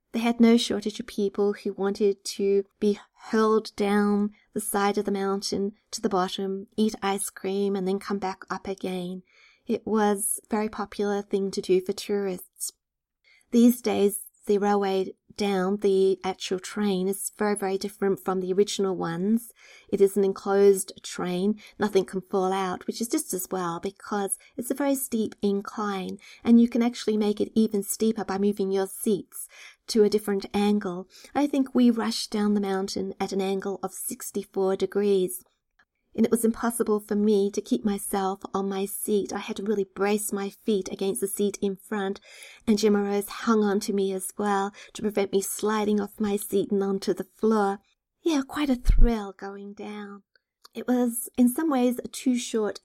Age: 30-49